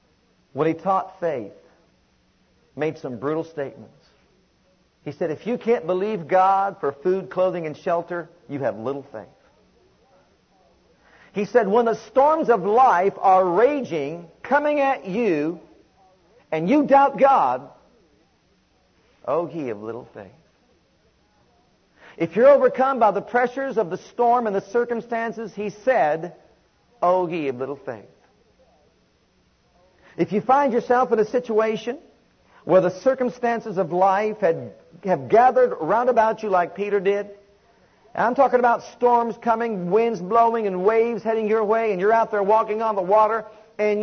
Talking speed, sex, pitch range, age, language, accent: 145 wpm, male, 155-235 Hz, 50-69, English, American